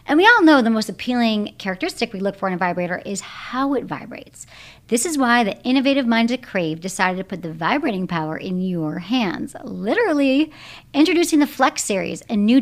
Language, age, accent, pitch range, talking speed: English, 40-59, American, 200-275 Hz, 200 wpm